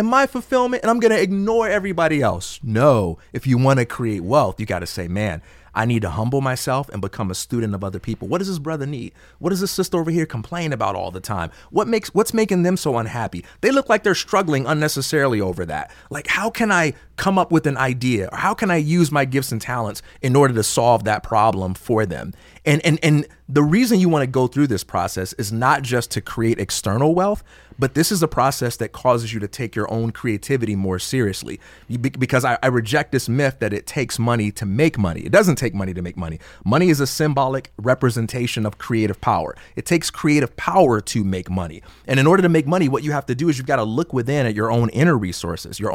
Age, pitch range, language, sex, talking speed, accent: 30-49, 110-160 Hz, English, male, 235 wpm, American